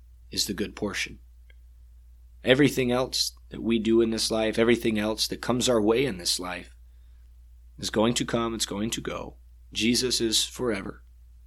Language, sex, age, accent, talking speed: English, male, 30-49, American, 165 wpm